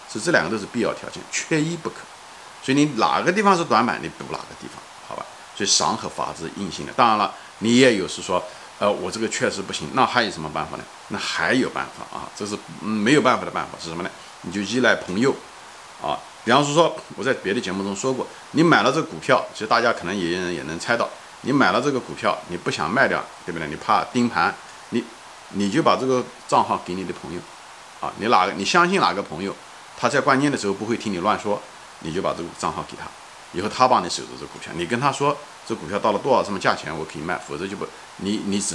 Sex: male